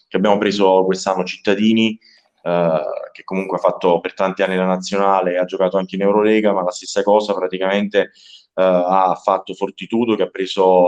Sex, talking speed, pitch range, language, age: male, 175 wpm, 95-105 Hz, Italian, 20-39